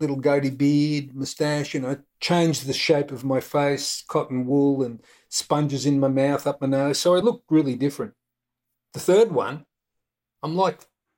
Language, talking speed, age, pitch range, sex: English, 180 wpm, 50-69, 125-155 Hz, male